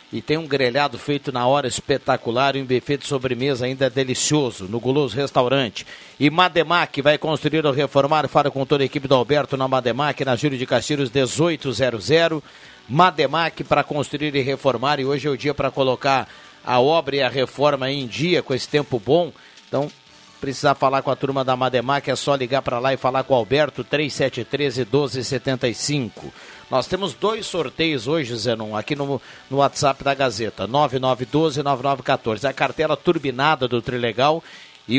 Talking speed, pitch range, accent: 175 wpm, 125-145 Hz, Brazilian